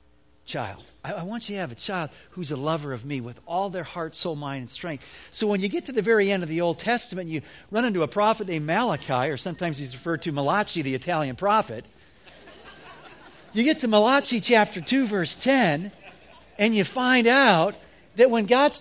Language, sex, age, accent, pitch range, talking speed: English, male, 50-69, American, 145-215 Hz, 205 wpm